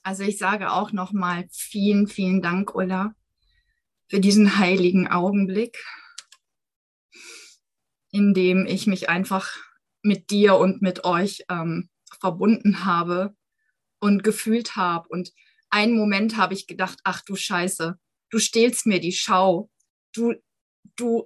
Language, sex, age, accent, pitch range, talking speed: German, female, 20-39, German, 185-215 Hz, 125 wpm